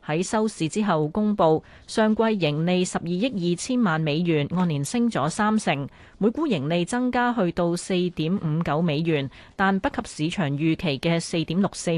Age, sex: 30-49, female